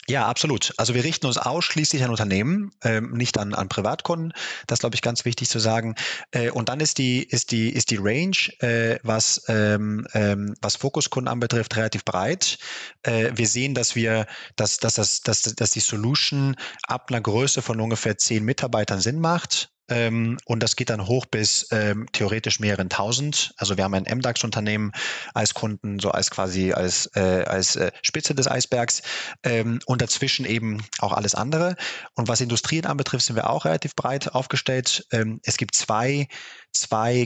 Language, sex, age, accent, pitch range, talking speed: German, male, 20-39, German, 110-130 Hz, 175 wpm